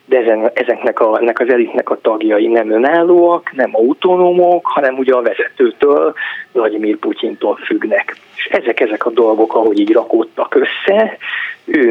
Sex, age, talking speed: male, 30-49, 130 wpm